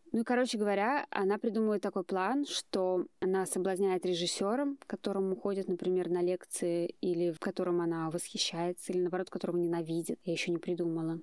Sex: female